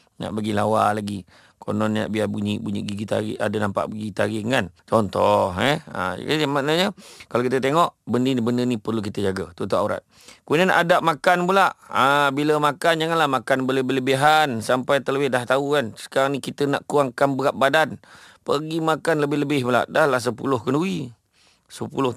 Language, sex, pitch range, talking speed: English, male, 110-145 Hz, 175 wpm